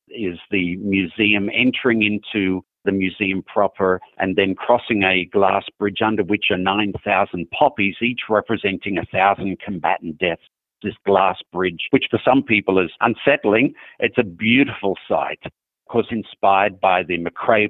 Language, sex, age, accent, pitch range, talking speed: English, male, 50-69, Australian, 90-115 Hz, 145 wpm